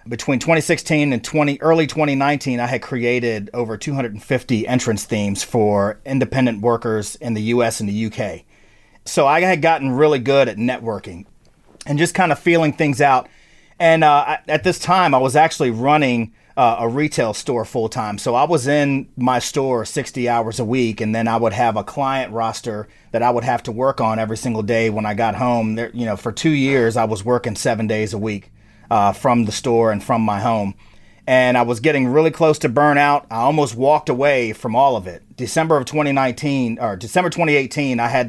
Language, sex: English, male